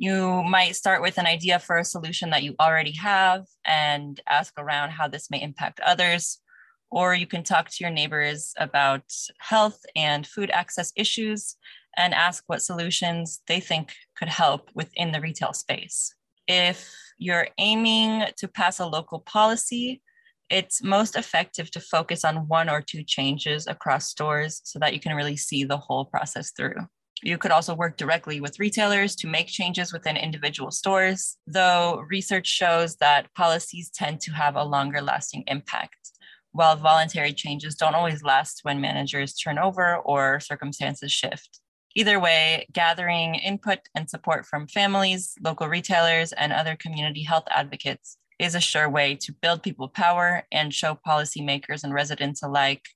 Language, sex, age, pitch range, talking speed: English, female, 20-39, 150-180 Hz, 160 wpm